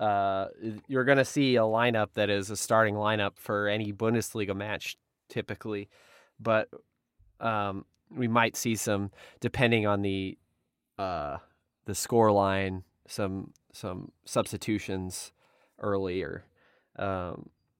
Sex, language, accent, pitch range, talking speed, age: male, English, American, 100-115 Hz, 115 wpm, 20-39